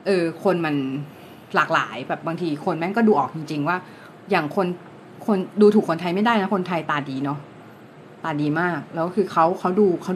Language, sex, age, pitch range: Thai, female, 30-49, 165-210 Hz